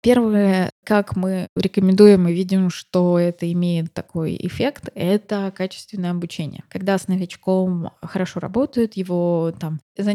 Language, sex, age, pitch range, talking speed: Russian, female, 20-39, 185-220 Hz, 130 wpm